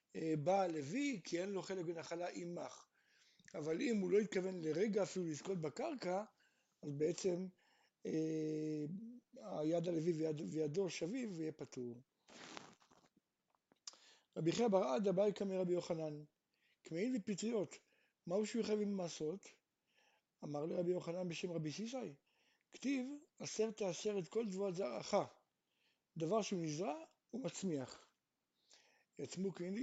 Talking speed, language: 110 wpm, Hebrew